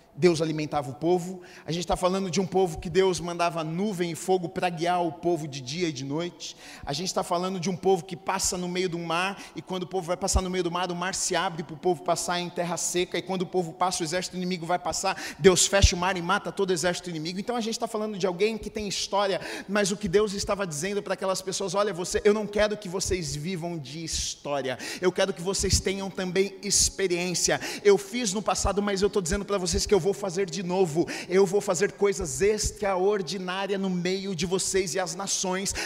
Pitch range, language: 180-215 Hz, Portuguese